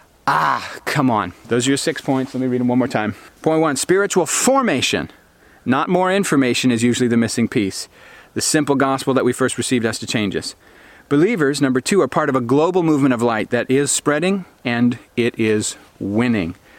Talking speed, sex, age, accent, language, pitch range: 200 wpm, male, 40-59, American, English, 120-145 Hz